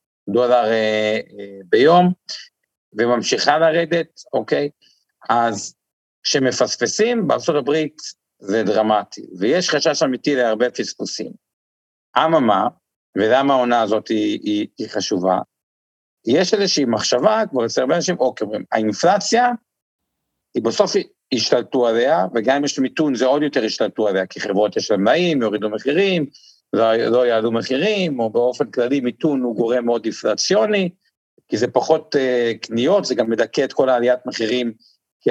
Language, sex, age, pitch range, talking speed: Hebrew, male, 50-69, 115-170 Hz, 135 wpm